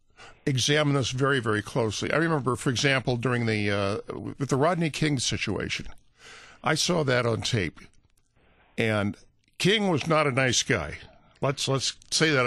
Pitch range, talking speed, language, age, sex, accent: 115-150 Hz, 160 wpm, English, 50-69, male, American